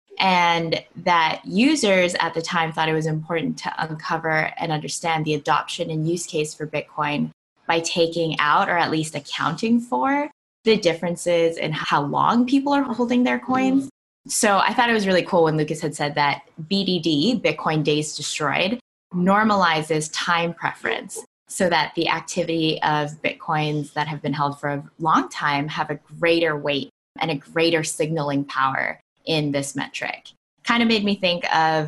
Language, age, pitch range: English, 20-39, 150-175 Hz